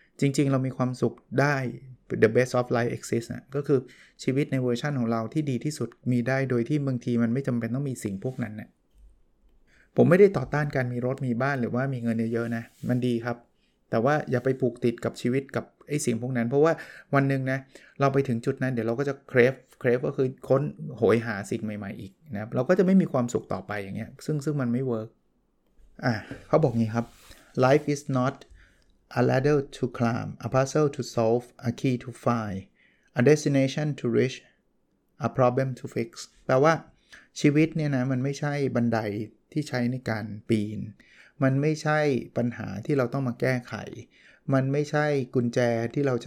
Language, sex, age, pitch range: Thai, male, 20-39, 115-140 Hz